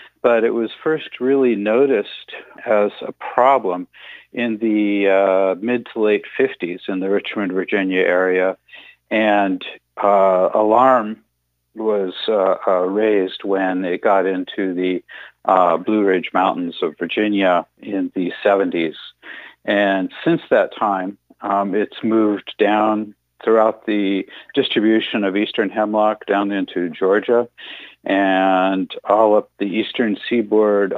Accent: American